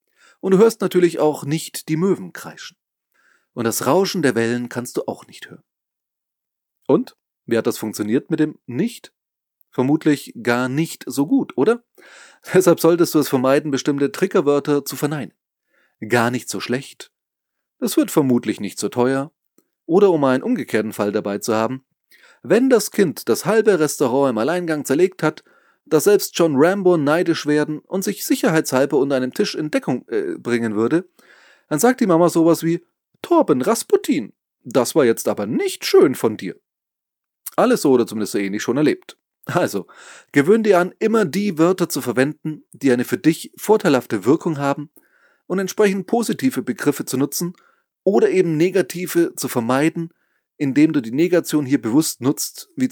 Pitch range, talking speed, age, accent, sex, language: 130-195 Hz, 165 wpm, 30-49, German, male, German